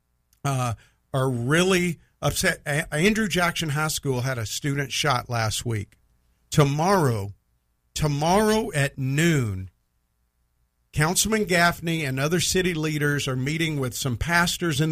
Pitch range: 125-185 Hz